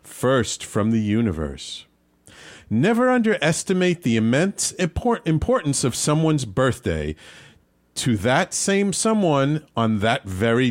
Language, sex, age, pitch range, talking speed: English, male, 40-59, 105-170 Hz, 110 wpm